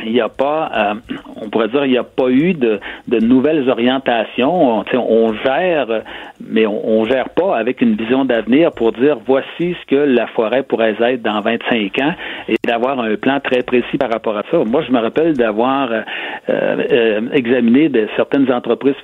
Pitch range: 120-160 Hz